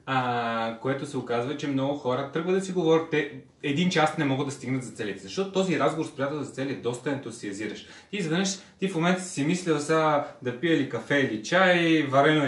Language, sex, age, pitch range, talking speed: Bulgarian, male, 20-39, 125-160 Hz, 210 wpm